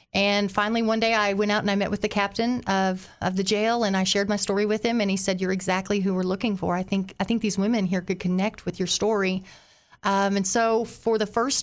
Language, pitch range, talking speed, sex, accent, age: English, 190-210 Hz, 265 wpm, female, American, 40-59